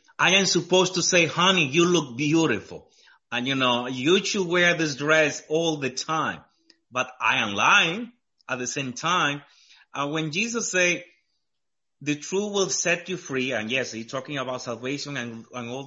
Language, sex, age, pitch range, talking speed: English, male, 30-49, 130-165 Hz, 180 wpm